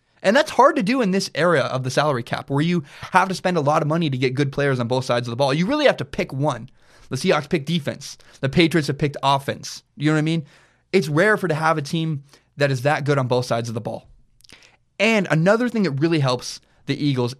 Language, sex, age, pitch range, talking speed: English, male, 20-39, 125-170 Hz, 260 wpm